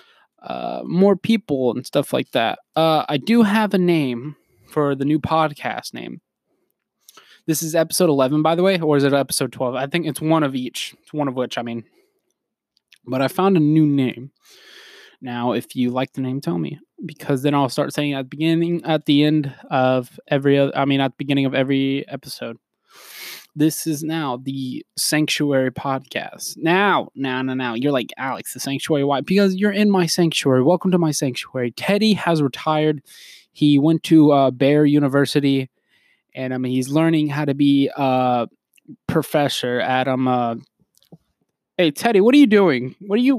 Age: 20-39